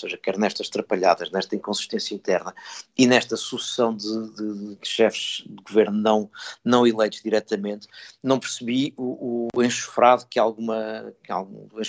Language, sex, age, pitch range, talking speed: Portuguese, male, 50-69, 115-135 Hz, 150 wpm